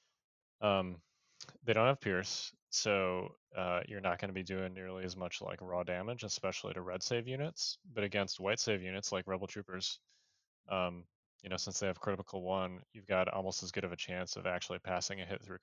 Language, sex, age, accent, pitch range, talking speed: English, male, 20-39, American, 90-100 Hz, 205 wpm